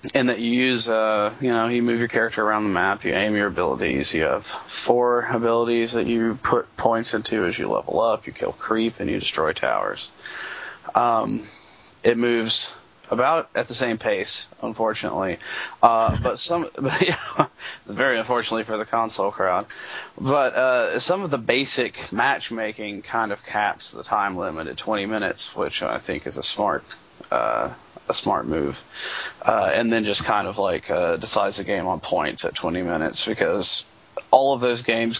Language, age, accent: English, 20-39, American